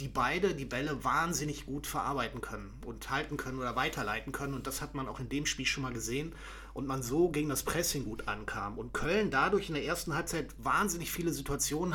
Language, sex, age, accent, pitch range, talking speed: German, male, 30-49, German, 140-180 Hz, 215 wpm